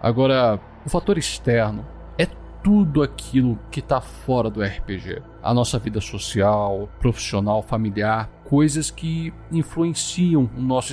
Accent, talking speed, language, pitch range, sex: Brazilian, 125 wpm, Portuguese, 110-150 Hz, male